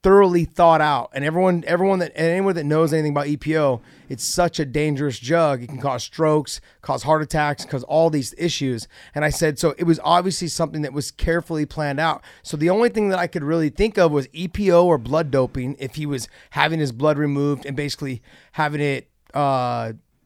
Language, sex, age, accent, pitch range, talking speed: English, male, 30-49, American, 135-160 Hz, 205 wpm